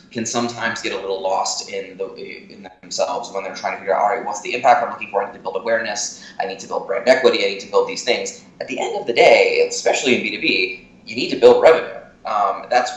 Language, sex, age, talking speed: English, male, 20-39, 265 wpm